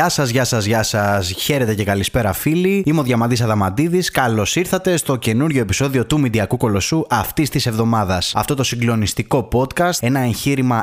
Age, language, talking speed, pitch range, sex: 20-39, Greek, 170 wpm, 110-145 Hz, male